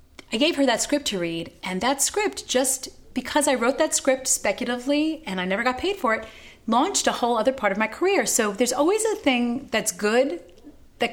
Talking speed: 215 wpm